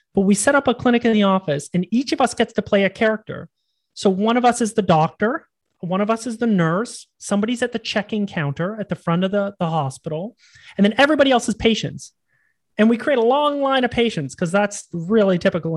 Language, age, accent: English, 30-49, American